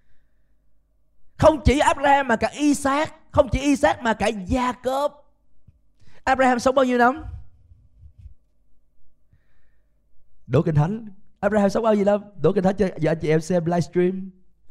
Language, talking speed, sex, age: Vietnamese, 145 wpm, male, 20-39